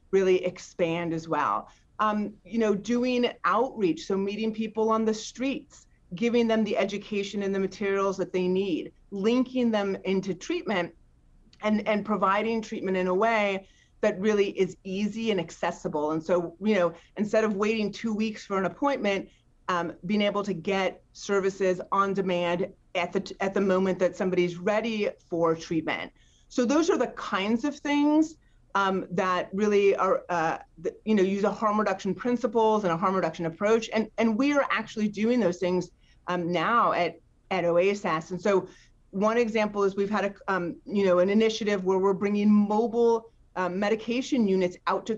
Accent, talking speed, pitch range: American, 175 wpm, 180-220 Hz